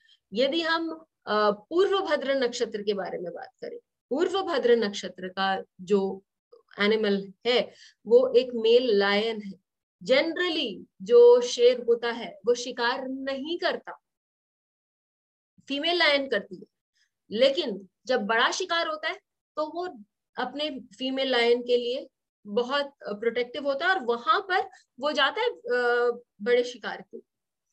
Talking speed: 125 wpm